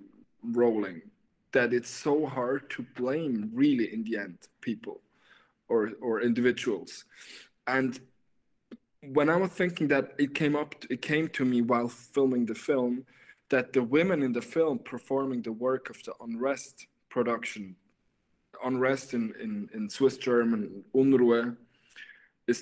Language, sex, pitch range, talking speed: English, male, 120-165 Hz, 140 wpm